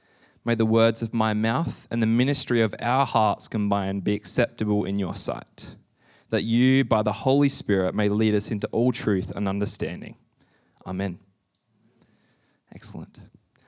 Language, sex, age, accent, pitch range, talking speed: English, male, 20-39, Australian, 100-130 Hz, 150 wpm